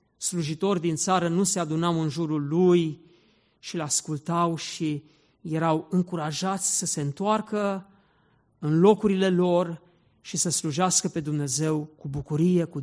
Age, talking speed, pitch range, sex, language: 50-69, 130 wpm, 150-185 Hz, male, Romanian